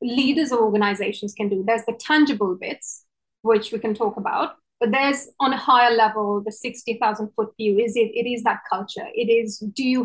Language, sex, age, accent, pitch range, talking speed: English, female, 30-49, Indian, 210-245 Hz, 210 wpm